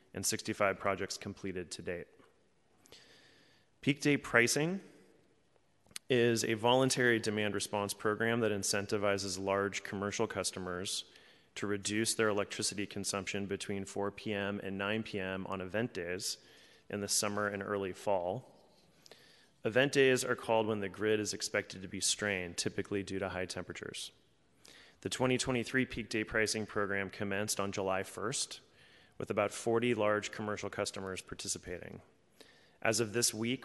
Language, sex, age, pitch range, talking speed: English, male, 30-49, 100-110 Hz, 140 wpm